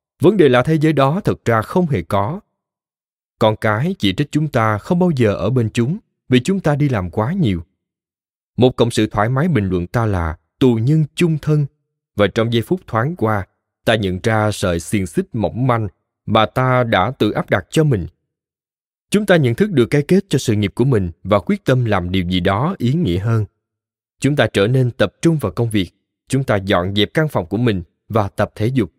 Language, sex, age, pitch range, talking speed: Vietnamese, male, 20-39, 105-145 Hz, 225 wpm